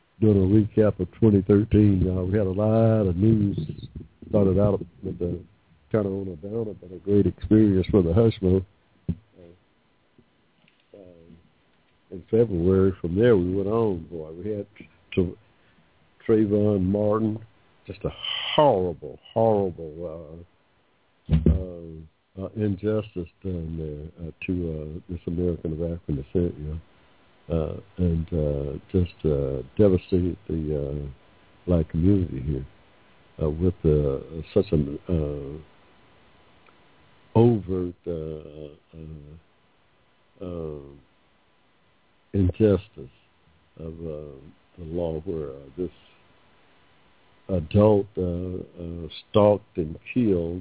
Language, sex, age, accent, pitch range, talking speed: English, male, 60-79, American, 80-100 Hz, 115 wpm